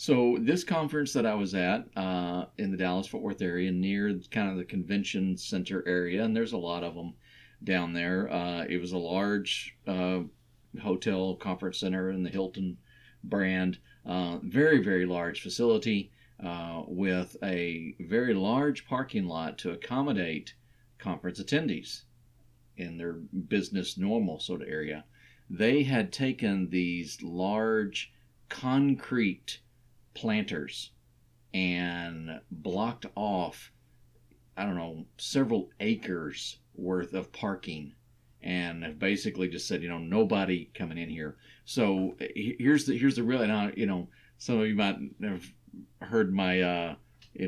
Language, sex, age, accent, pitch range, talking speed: English, male, 50-69, American, 85-110 Hz, 140 wpm